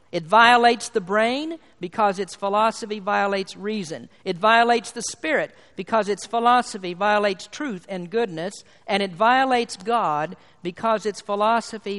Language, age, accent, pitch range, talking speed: English, 50-69, American, 190-240 Hz, 135 wpm